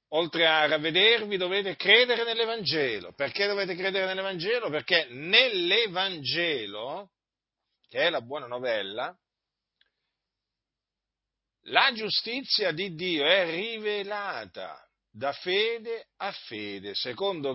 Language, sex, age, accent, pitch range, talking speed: Italian, male, 50-69, native, 135-205 Hz, 95 wpm